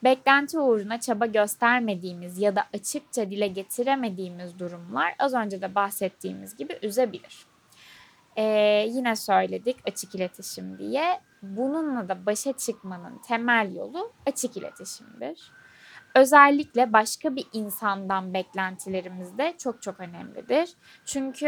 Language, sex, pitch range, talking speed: Turkish, female, 200-265 Hz, 110 wpm